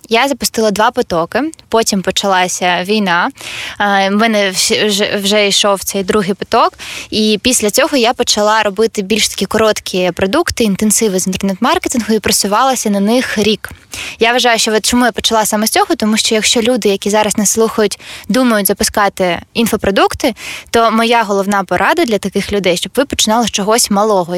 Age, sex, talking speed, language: 20-39, female, 160 wpm, Ukrainian